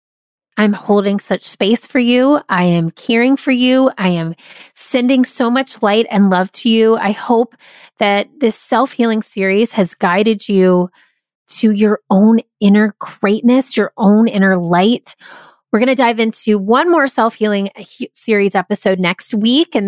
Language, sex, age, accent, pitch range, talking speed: English, female, 30-49, American, 195-245 Hz, 165 wpm